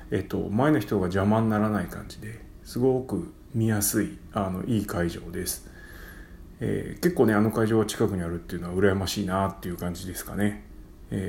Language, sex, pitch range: Japanese, male, 90-115 Hz